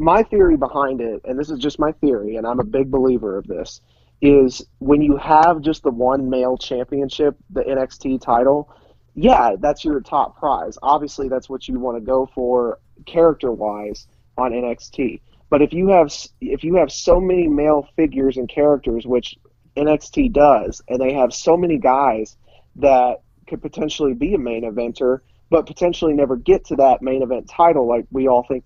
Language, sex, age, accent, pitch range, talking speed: English, male, 30-49, American, 130-160 Hz, 180 wpm